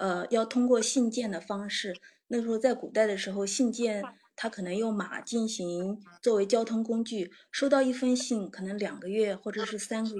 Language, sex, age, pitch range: Chinese, female, 30-49, 195-245 Hz